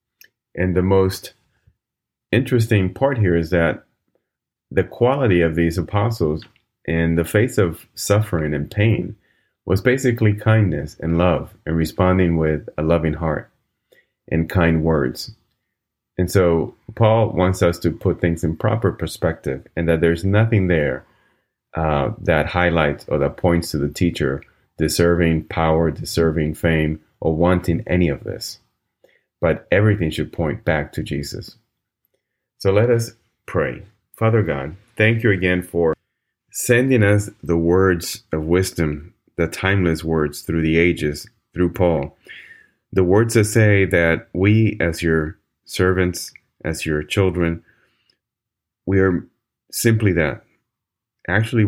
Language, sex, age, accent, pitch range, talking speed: English, male, 30-49, American, 80-105 Hz, 135 wpm